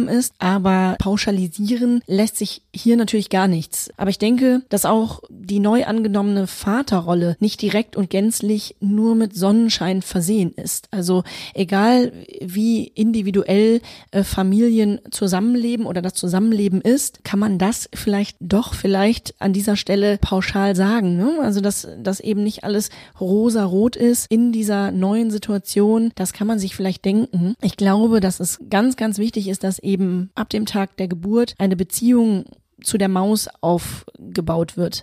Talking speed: 150 wpm